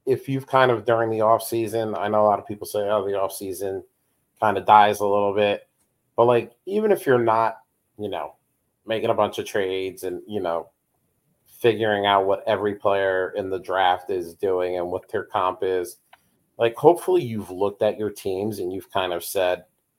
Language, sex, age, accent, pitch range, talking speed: English, male, 30-49, American, 100-115 Hz, 205 wpm